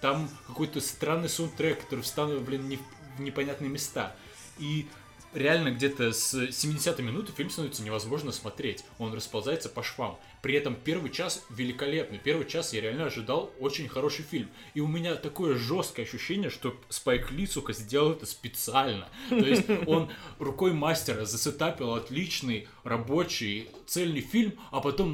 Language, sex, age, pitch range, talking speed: Russian, male, 20-39, 135-170 Hz, 145 wpm